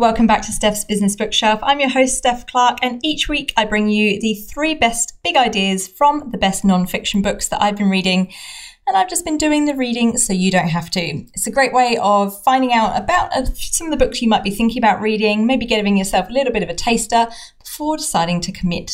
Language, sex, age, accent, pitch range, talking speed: English, female, 30-49, British, 185-245 Hz, 235 wpm